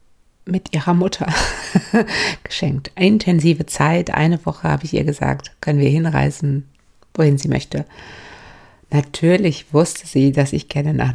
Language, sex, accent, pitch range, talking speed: German, female, German, 140-165 Hz, 135 wpm